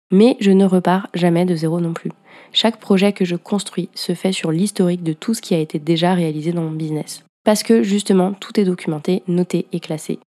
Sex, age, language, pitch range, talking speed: female, 20-39, French, 170-195 Hz, 220 wpm